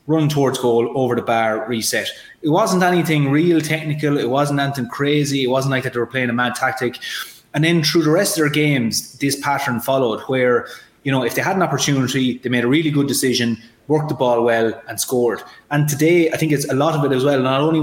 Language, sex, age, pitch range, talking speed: English, male, 20-39, 120-145 Hz, 235 wpm